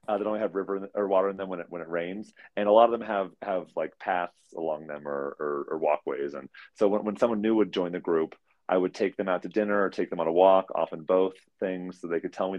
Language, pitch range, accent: English, 85-100 Hz, American